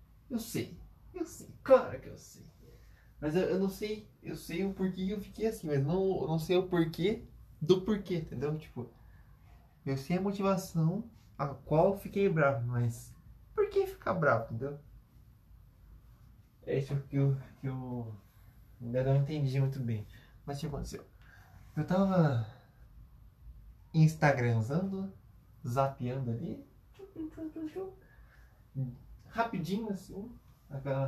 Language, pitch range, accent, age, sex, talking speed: Portuguese, 120-175 Hz, Brazilian, 20-39, male, 145 wpm